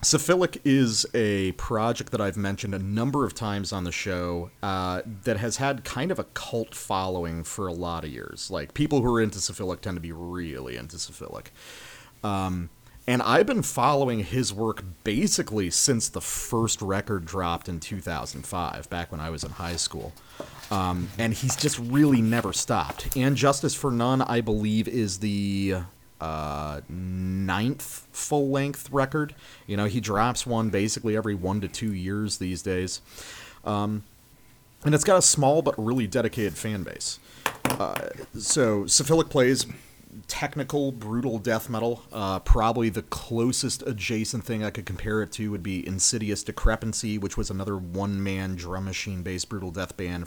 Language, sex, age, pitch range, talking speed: English, male, 30-49, 95-125 Hz, 165 wpm